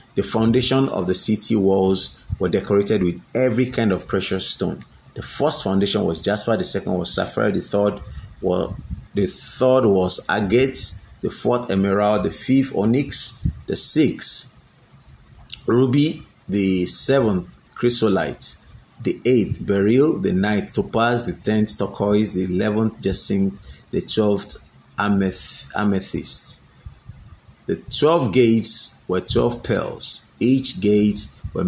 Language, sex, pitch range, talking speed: English, male, 95-120 Hz, 125 wpm